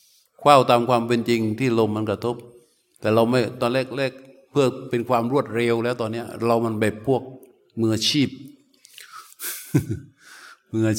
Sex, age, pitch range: male, 60-79, 110-135 Hz